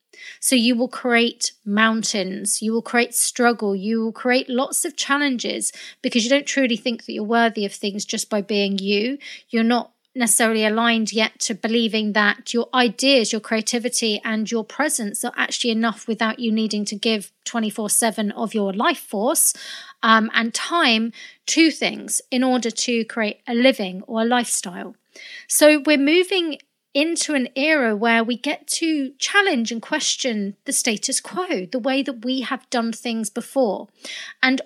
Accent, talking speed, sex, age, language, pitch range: British, 165 wpm, female, 30-49, English, 225-275 Hz